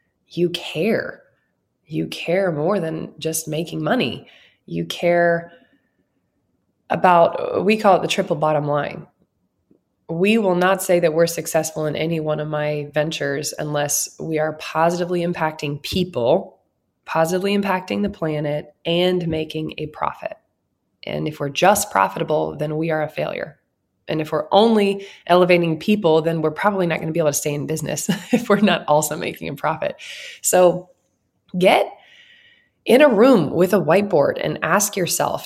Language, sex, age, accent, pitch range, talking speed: English, female, 20-39, American, 150-190 Hz, 155 wpm